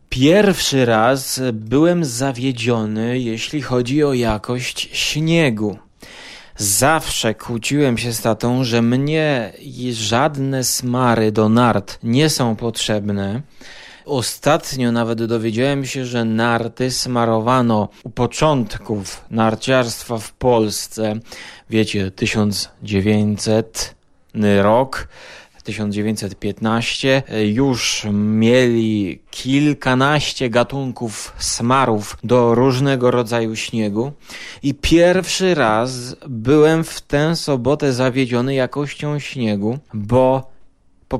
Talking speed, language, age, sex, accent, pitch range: 90 wpm, Polish, 20-39, male, native, 115-145 Hz